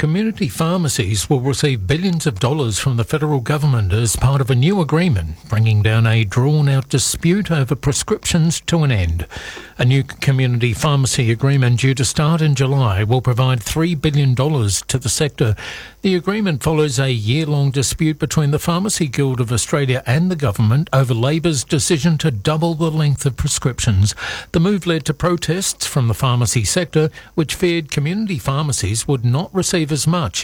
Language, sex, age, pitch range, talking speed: English, male, 60-79, 125-160 Hz, 170 wpm